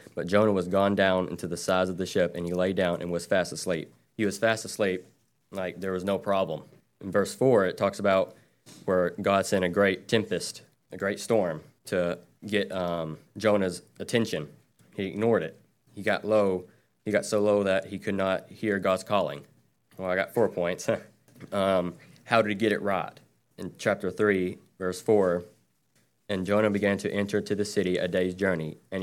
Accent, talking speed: American, 195 wpm